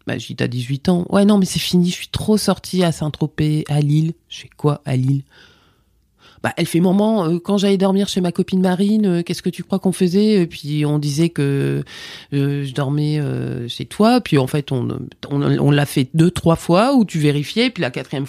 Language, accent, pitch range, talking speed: French, French, 130-175 Hz, 245 wpm